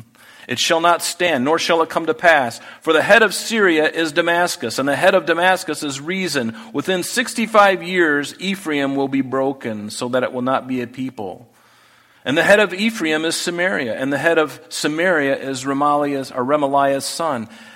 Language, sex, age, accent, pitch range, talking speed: English, male, 40-59, American, 130-170 Hz, 180 wpm